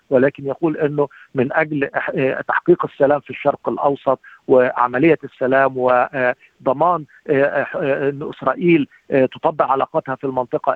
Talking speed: 105 wpm